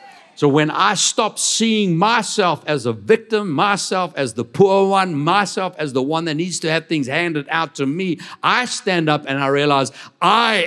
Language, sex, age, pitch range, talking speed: English, male, 60-79, 150-215 Hz, 190 wpm